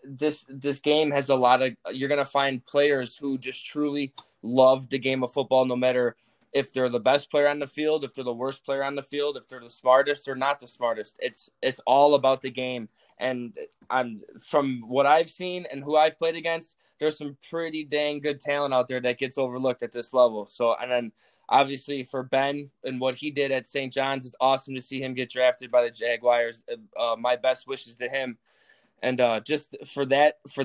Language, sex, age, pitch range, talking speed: English, male, 20-39, 125-140 Hz, 220 wpm